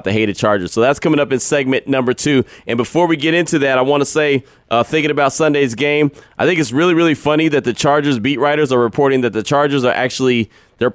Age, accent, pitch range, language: 20-39, American, 130-165 Hz, English